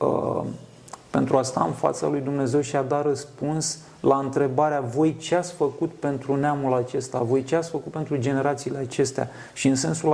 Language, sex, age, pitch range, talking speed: Romanian, male, 40-59, 130-155 Hz, 180 wpm